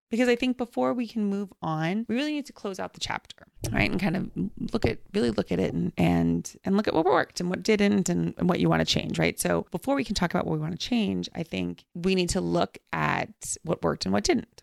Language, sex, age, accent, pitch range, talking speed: English, female, 30-49, American, 160-215 Hz, 275 wpm